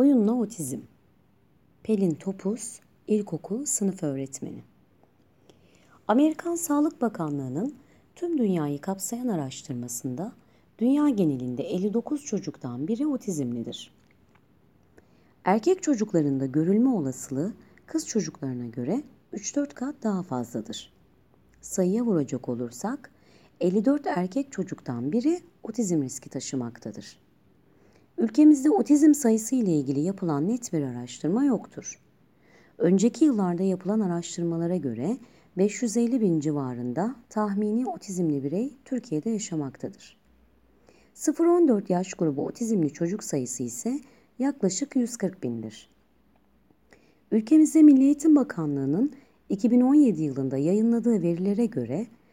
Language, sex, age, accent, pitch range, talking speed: Turkish, female, 40-59, native, 150-245 Hz, 95 wpm